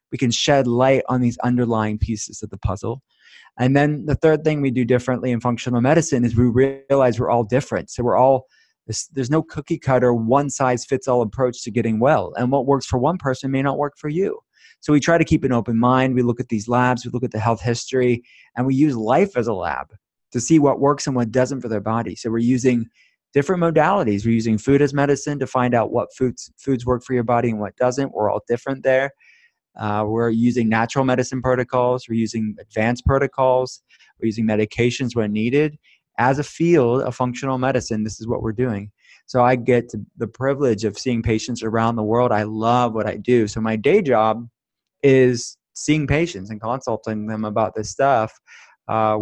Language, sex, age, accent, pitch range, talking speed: English, male, 30-49, American, 115-135 Hz, 210 wpm